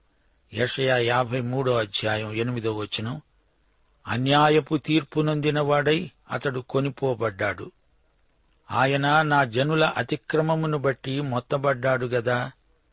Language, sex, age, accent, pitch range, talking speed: Telugu, male, 60-79, native, 115-150 Hz, 75 wpm